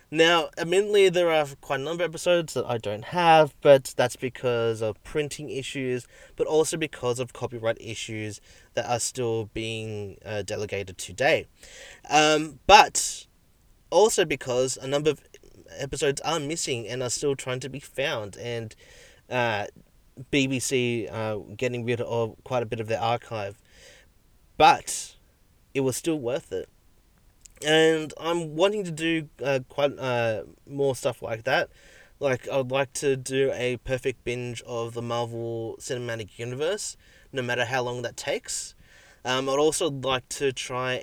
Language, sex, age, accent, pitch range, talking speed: English, male, 30-49, Australian, 115-145 Hz, 155 wpm